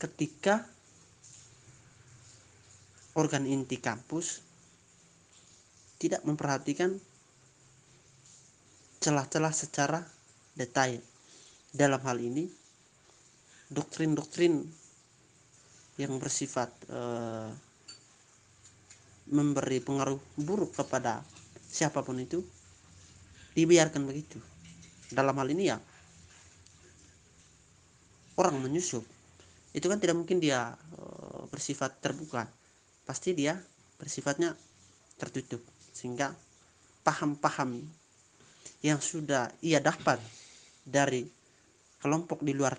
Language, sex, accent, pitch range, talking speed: Indonesian, male, native, 120-155 Hz, 70 wpm